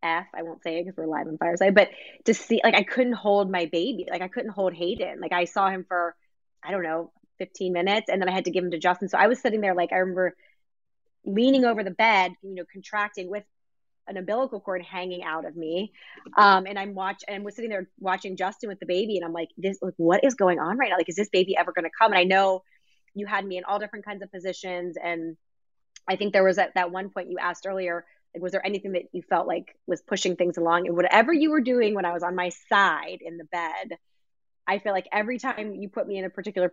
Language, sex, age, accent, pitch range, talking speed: English, female, 20-39, American, 175-200 Hz, 260 wpm